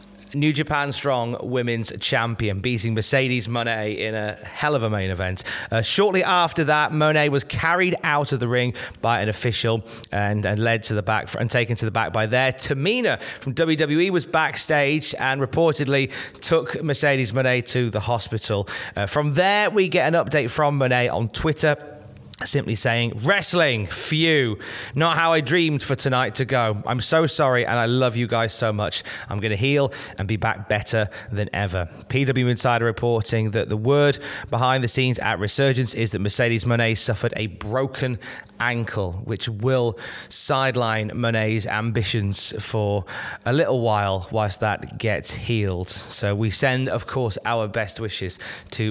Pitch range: 110-135 Hz